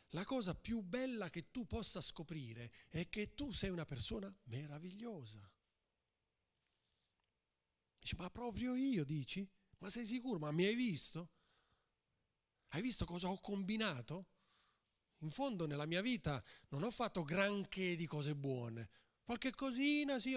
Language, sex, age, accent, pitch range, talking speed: Italian, male, 40-59, native, 140-215 Hz, 140 wpm